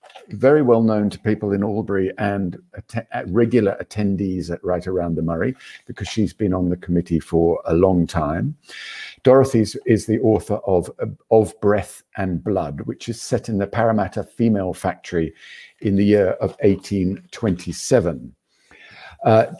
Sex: male